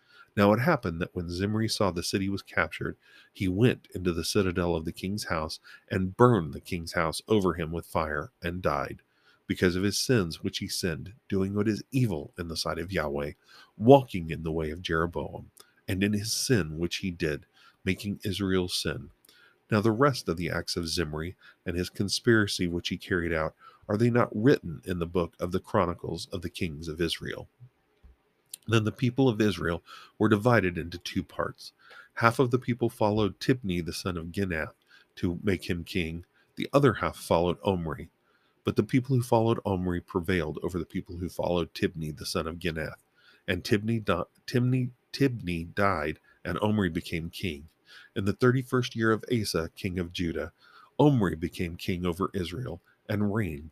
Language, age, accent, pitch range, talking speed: English, 40-59, American, 85-110 Hz, 185 wpm